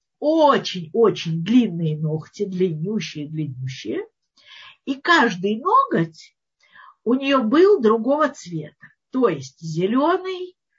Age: 50-69